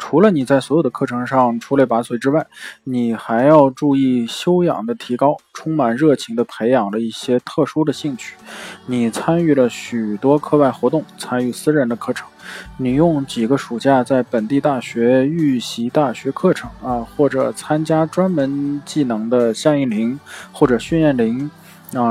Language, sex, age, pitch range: Chinese, male, 20-39, 120-155 Hz